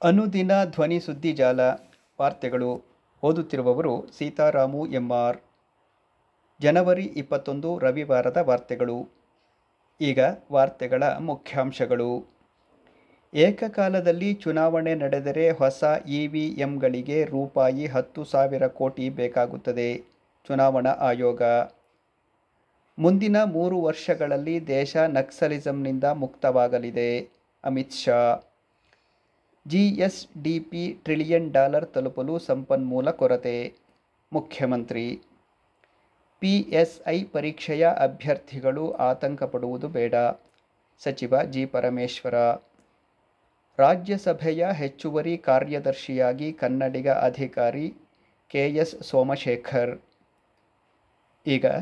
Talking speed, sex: 75 wpm, male